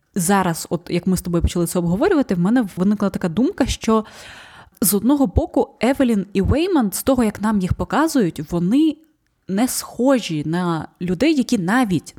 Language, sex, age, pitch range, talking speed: Ukrainian, female, 20-39, 175-230 Hz, 165 wpm